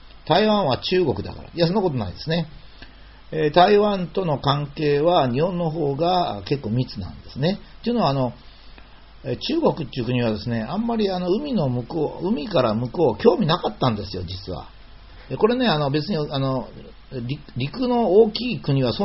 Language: Japanese